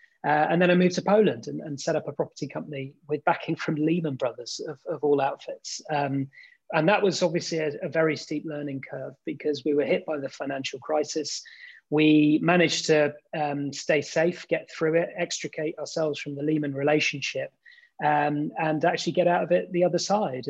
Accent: British